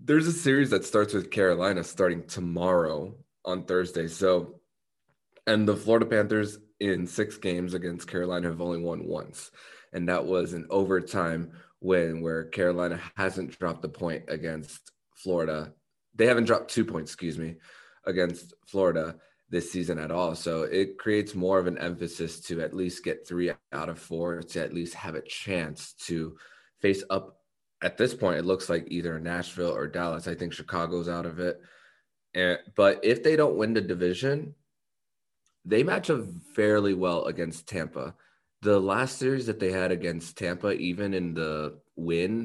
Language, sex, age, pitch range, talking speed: English, male, 20-39, 85-105 Hz, 170 wpm